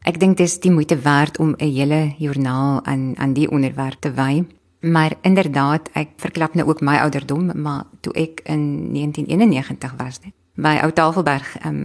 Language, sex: English, female